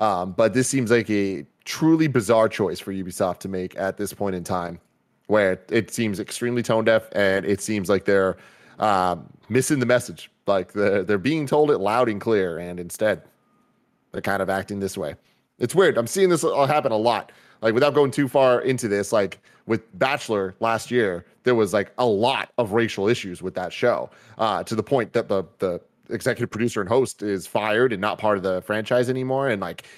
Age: 30-49